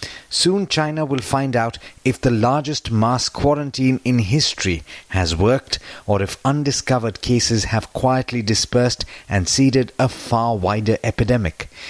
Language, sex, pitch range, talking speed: English, male, 105-130 Hz, 135 wpm